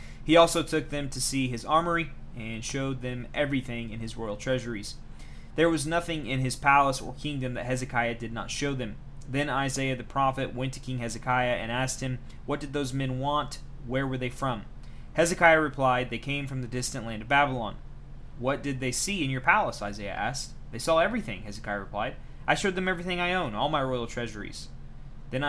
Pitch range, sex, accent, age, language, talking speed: 120-145 Hz, male, American, 20-39, English, 200 wpm